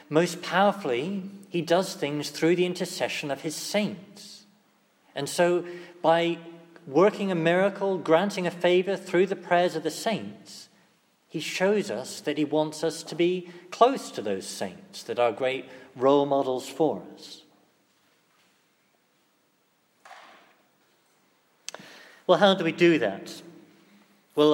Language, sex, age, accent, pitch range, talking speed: English, male, 40-59, British, 150-180 Hz, 130 wpm